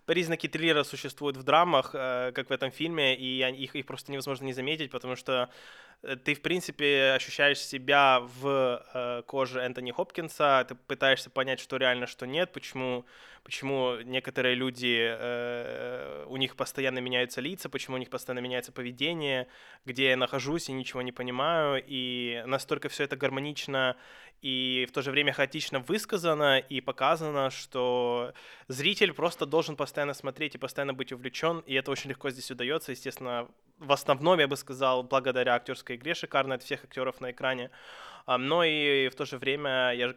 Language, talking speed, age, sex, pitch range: Russian, 165 wpm, 20-39, male, 125-145 Hz